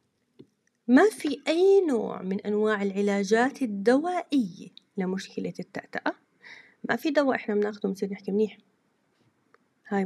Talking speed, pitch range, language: 115 wpm, 200-245 Hz, Arabic